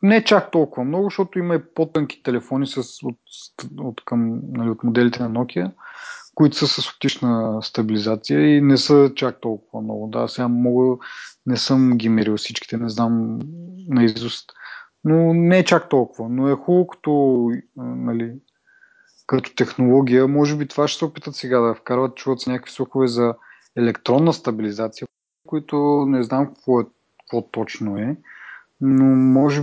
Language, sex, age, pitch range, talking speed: Bulgarian, male, 30-49, 115-140 Hz, 155 wpm